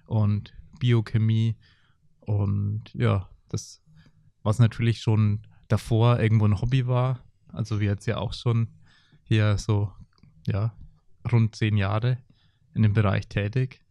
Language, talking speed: German, 125 wpm